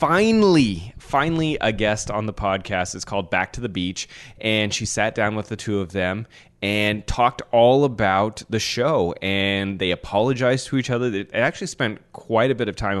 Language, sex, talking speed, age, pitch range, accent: English, male, 195 wpm, 20-39, 95-125 Hz, American